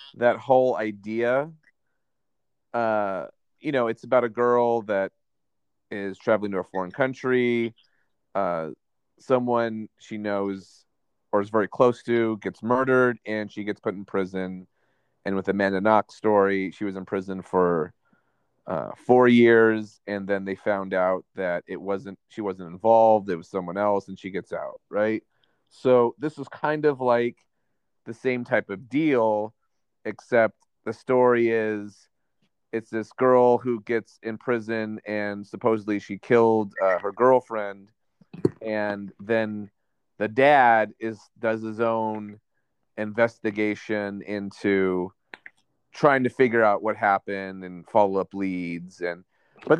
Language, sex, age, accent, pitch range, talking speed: English, male, 30-49, American, 100-120 Hz, 140 wpm